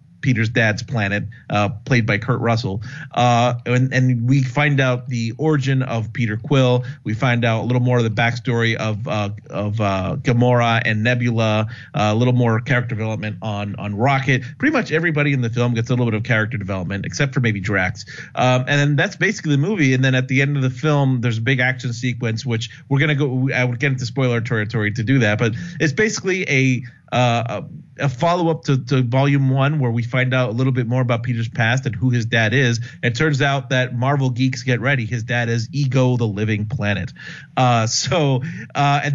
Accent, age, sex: American, 40-59, male